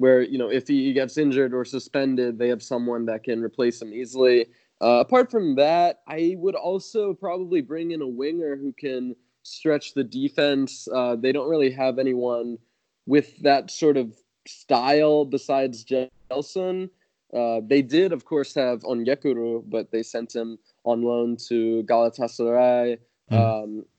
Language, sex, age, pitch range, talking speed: English, male, 20-39, 120-145 Hz, 160 wpm